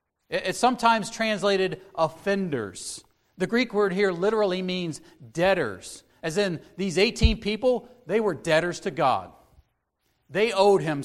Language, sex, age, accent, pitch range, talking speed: English, male, 40-59, American, 140-195 Hz, 130 wpm